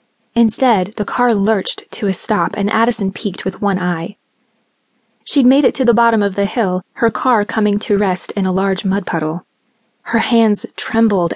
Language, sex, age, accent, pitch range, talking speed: English, female, 20-39, American, 195-235 Hz, 185 wpm